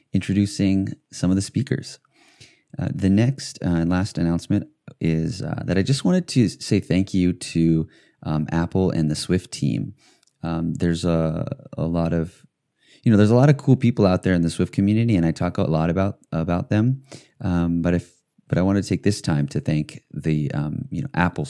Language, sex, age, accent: English, male, 30-49, American